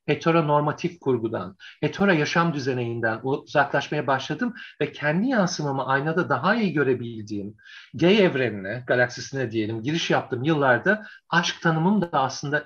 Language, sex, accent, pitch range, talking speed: Turkish, male, native, 140-195 Hz, 125 wpm